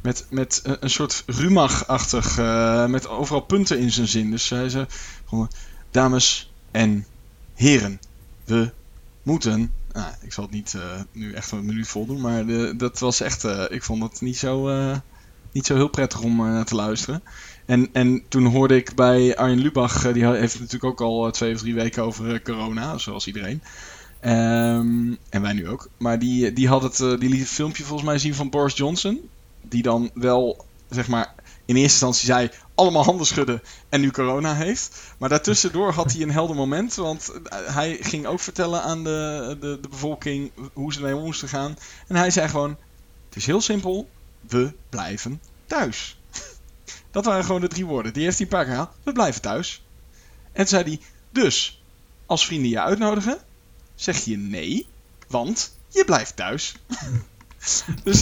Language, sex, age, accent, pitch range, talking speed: Dutch, male, 20-39, Dutch, 115-150 Hz, 185 wpm